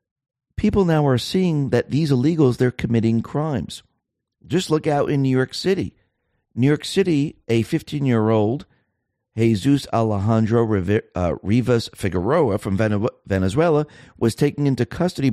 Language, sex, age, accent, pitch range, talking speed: English, male, 50-69, American, 105-140 Hz, 125 wpm